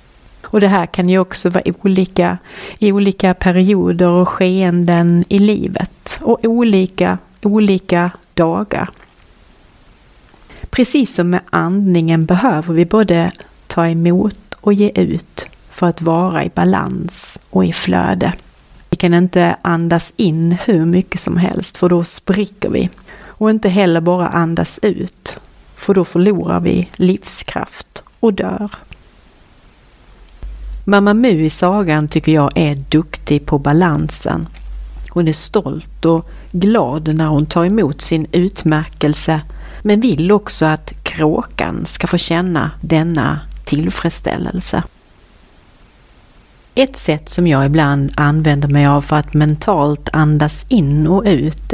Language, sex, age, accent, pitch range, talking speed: Swedish, female, 30-49, native, 155-190 Hz, 130 wpm